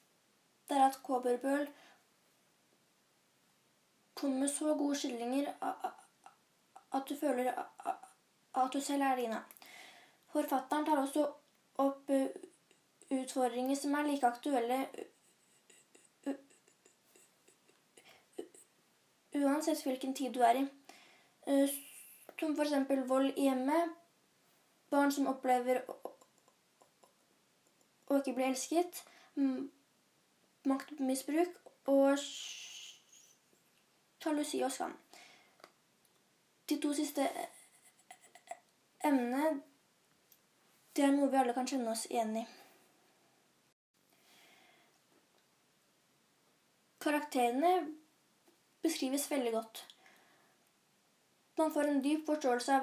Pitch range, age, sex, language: 265-305 Hz, 20-39, female, English